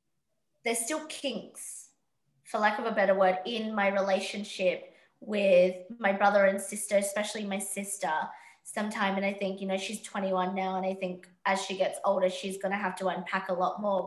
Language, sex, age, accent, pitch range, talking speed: English, female, 20-39, Australian, 190-220 Hz, 190 wpm